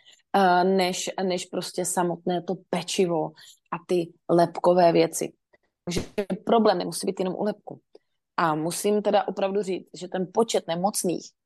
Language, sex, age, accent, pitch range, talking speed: Czech, female, 30-49, native, 175-205 Hz, 135 wpm